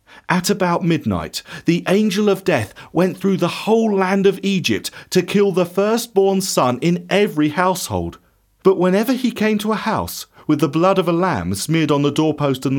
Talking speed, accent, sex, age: 190 wpm, British, male, 40-59